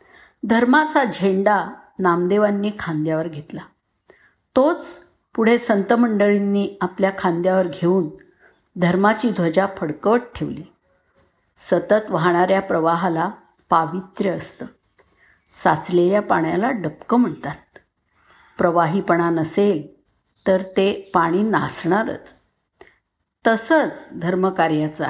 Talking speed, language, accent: 80 wpm, Marathi, native